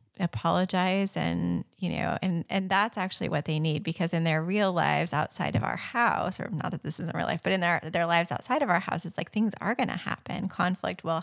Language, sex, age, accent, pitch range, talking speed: English, female, 20-39, American, 170-200 Hz, 240 wpm